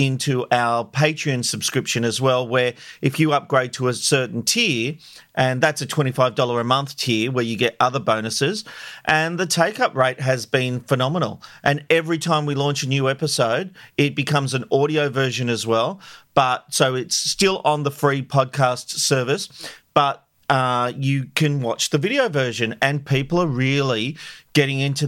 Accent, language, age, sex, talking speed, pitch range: Australian, English, 40-59, male, 170 wpm, 130-155 Hz